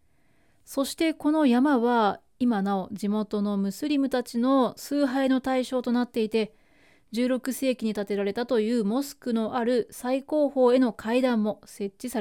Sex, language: female, Japanese